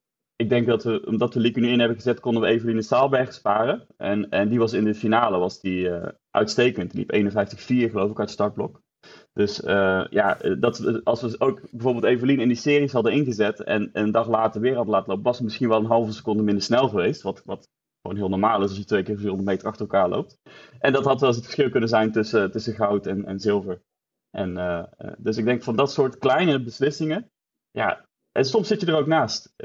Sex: male